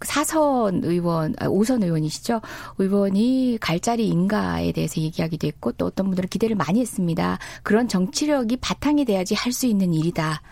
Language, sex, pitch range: Korean, female, 180-265 Hz